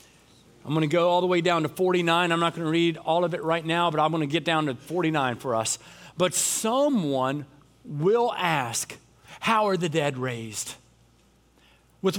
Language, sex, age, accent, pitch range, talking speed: English, male, 40-59, American, 150-190 Hz, 195 wpm